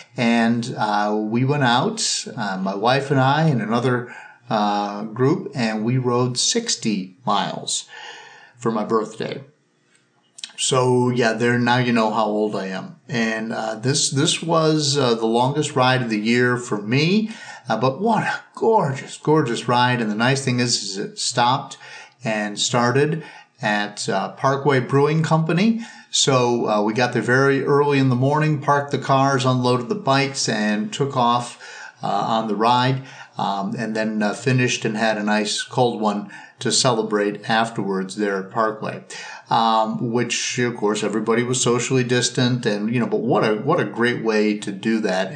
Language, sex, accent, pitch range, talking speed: English, male, American, 110-135 Hz, 170 wpm